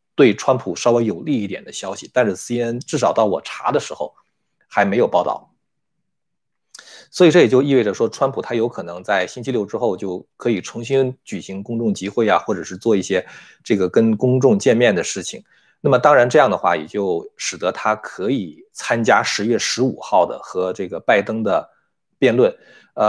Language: Chinese